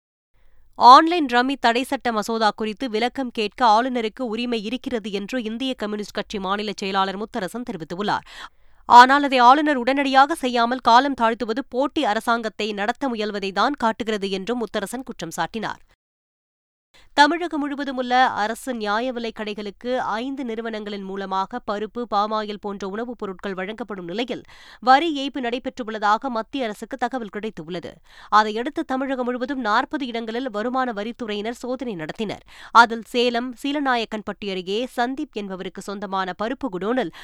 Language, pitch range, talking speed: Tamil, 205-250 Hz, 120 wpm